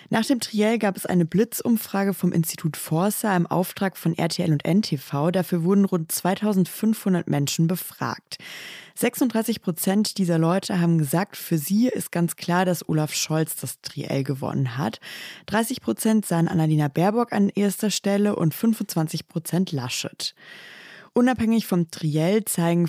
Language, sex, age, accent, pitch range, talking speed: German, female, 20-39, German, 160-195 Hz, 145 wpm